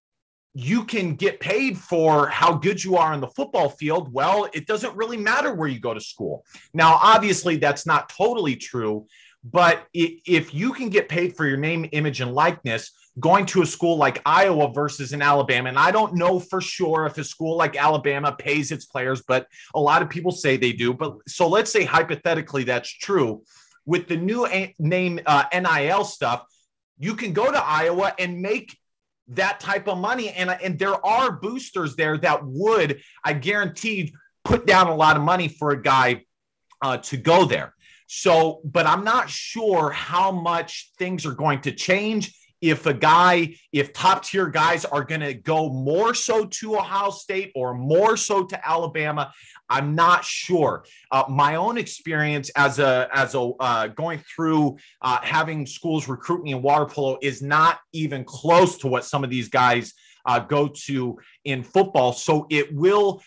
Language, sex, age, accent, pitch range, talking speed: English, male, 30-49, American, 140-185 Hz, 185 wpm